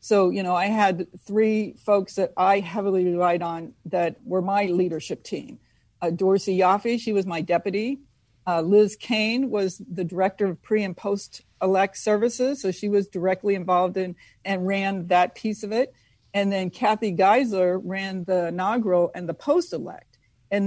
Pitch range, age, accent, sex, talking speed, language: 185-215 Hz, 50-69, American, female, 170 wpm, English